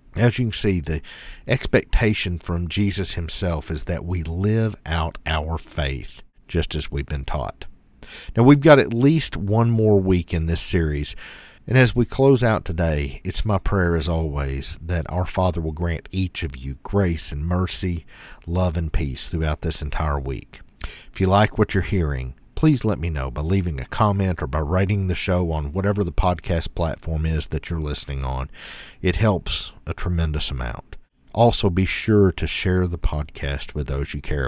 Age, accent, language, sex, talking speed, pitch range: 50-69, American, English, male, 185 wpm, 75-100 Hz